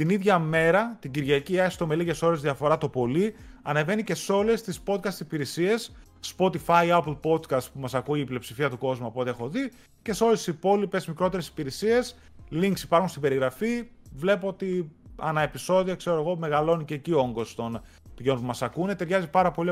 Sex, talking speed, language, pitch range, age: male, 190 wpm, Greek, 145-190 Hz, 30-49